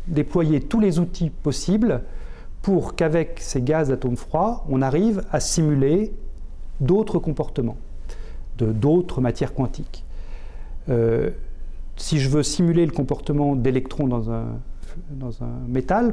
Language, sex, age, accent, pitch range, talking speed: French, male, 40-59, French, 125-175 Hz, 125 wpm